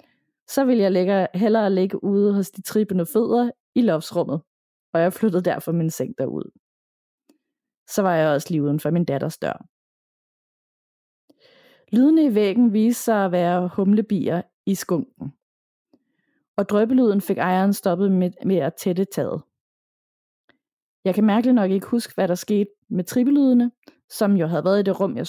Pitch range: 180-230 Hz